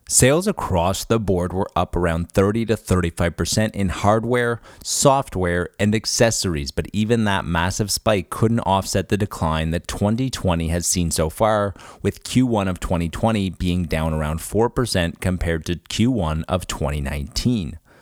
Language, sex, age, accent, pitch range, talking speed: English, male, 30-49, American, 85-110 Hz, 140 wpm